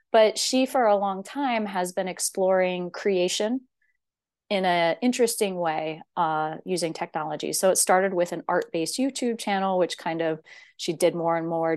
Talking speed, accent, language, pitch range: 170 wpm, American, English, 170-210 Hz